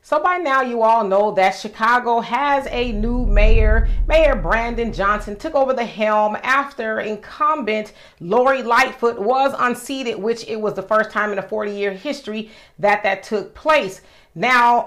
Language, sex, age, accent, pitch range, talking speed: English, female, 40-59, American, 205-270 Hz, 165 wpm